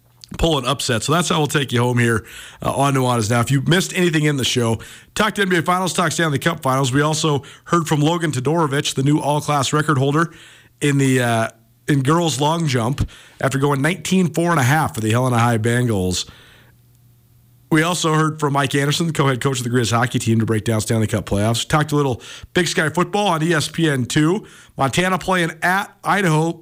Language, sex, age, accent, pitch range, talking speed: English, male, 40-59, American, 120-165 Hz, 200 wpm